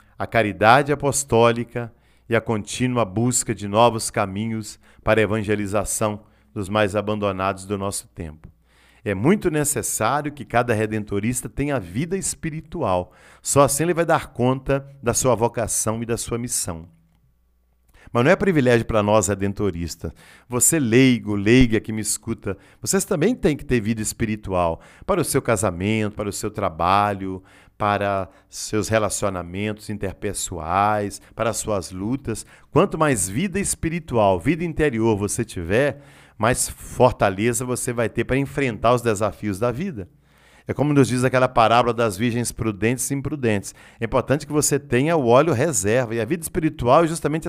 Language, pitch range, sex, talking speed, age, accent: Portuguese, 100-130 Hz, male, 150 wpm, 40-59, Brazilian